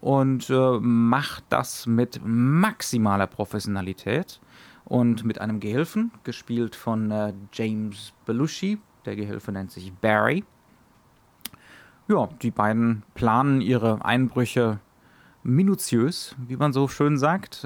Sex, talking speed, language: male, 110 wpm, German